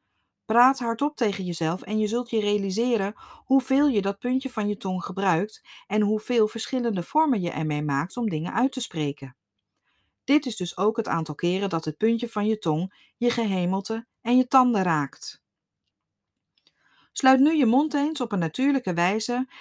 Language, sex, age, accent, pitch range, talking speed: Dutch, female, 40-59, Dutch, 175-240 Hz, 175 wpm